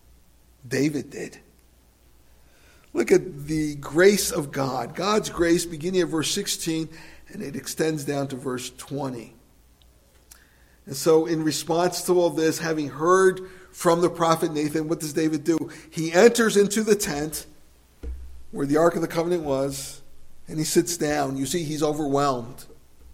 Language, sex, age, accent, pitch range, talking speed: English, male, 50-69, American, 125-190 Hz, 150 wpm